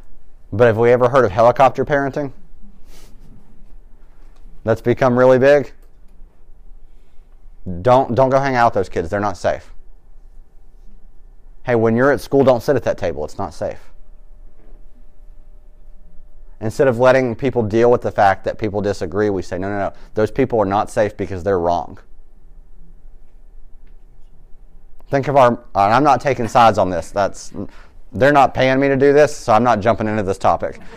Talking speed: 165 wpm